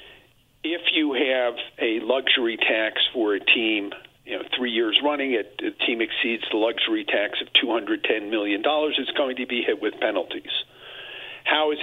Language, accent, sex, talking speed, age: English, American, male, 160 wpm, 50-69